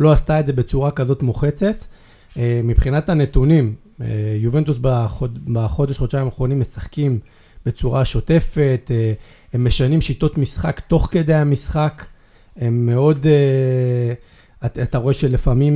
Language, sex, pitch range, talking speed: Hebrew, male, 120-150 Hz, 105 wpm